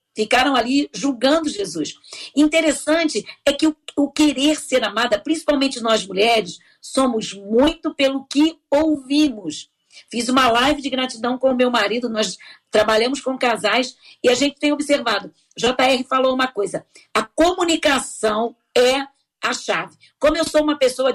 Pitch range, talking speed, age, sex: 240-300 Hz, 150 wpm, 50-69, female